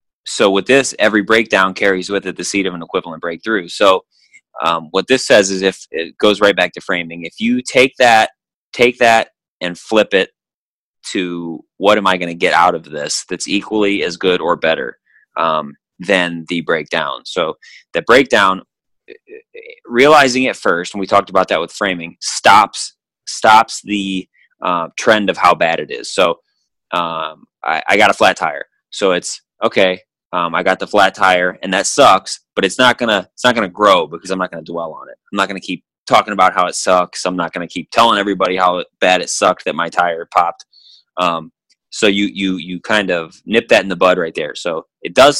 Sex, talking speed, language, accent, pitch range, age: male, 205 wpm, English, American, 90-110 Hz, 30-49